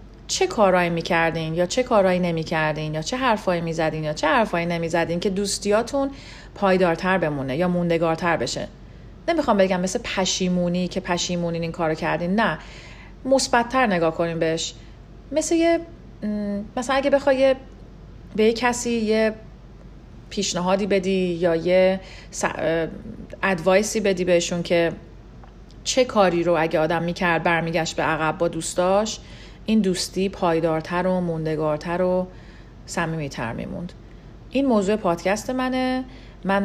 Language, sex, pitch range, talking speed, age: Persian, female, 165-205 Hz, 130 wpm, 40-59